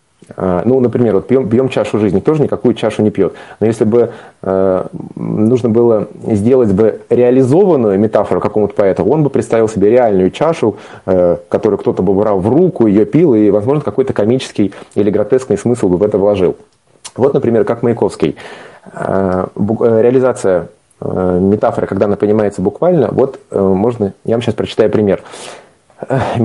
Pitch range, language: 100-125 Hz, Russian